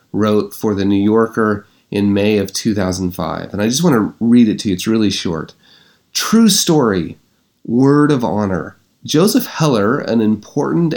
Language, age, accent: English, 30-49, American